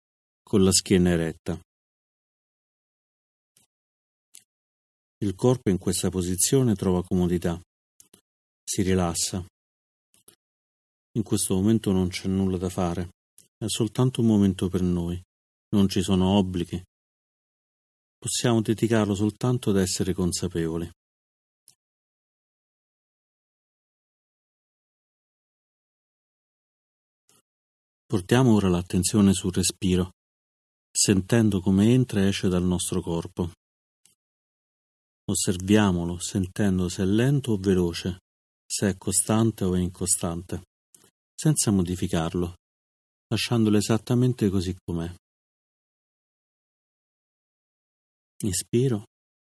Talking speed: 85 wpm